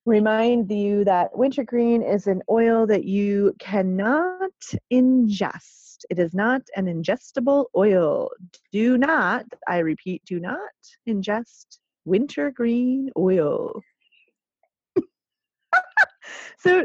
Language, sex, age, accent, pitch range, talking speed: English, female, 30-49, American, 215-320 Hz, 95 wpm